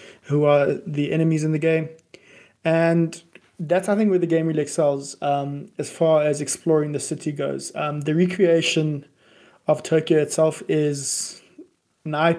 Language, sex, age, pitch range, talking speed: English, male, 20-39, 150-170 Hz, 155 wpm